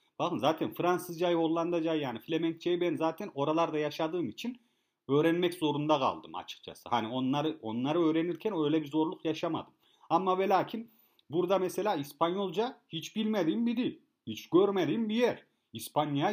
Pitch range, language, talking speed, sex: 145-180 Hz, Turkish, 140 wpm, male